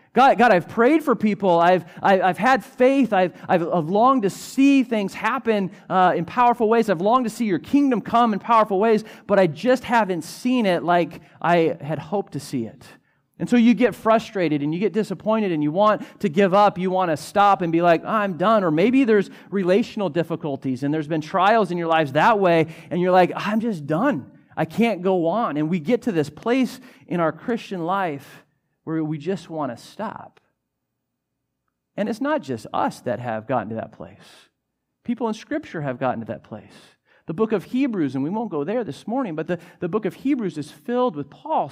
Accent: American